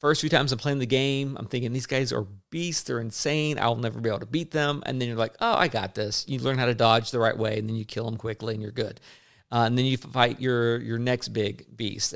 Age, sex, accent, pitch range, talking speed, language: 40-59, male, American, 110-130 Hz, 280 wpm, English